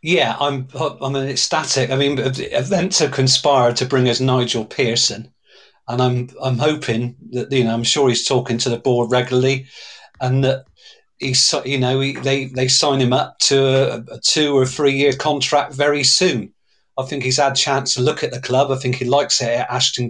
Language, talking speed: English, 205 wpm